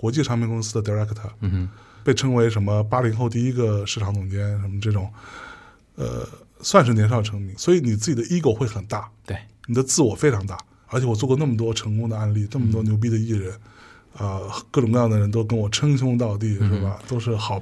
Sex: male